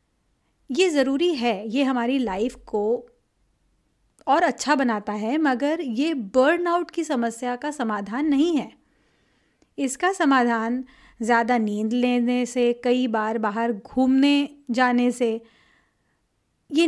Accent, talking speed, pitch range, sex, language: native, 115 wpm, 230-295 Hz, female, Hindi